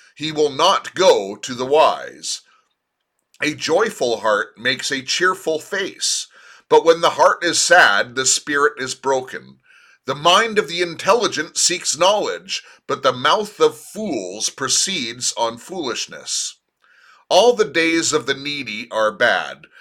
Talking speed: 140 wpm